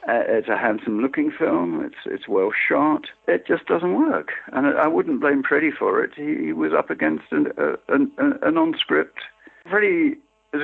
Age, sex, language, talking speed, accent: 60-79, male, English, 180 wpm, British